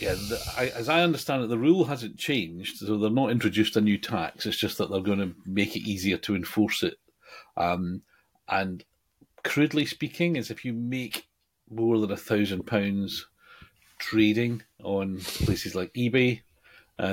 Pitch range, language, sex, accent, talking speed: 90-115 Hz, English, male, British, 170 wpm